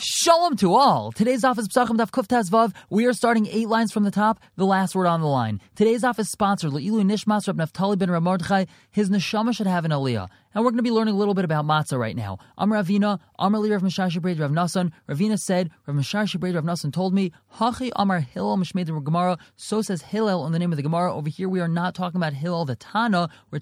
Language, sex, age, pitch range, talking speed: English, male, 20-39, 150-200 Hz, 225 wpm